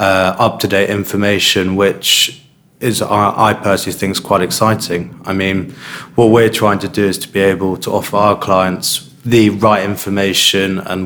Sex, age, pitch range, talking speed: male, 20-39, 95-105 Hz, 165 wpm